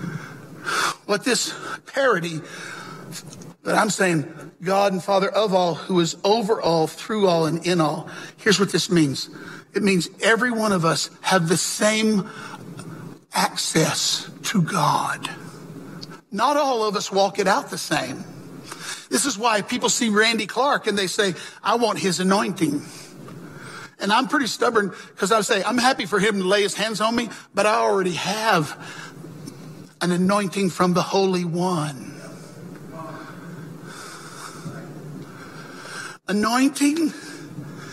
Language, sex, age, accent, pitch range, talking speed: English, male, 50-69, American, 170-220 Hz, 140 wpm